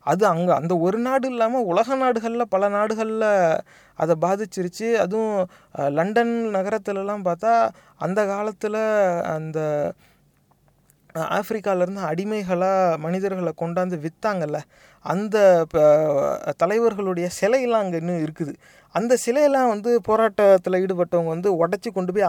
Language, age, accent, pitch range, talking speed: English, 30-49, Indian, 165-210 Hz, 105 wpm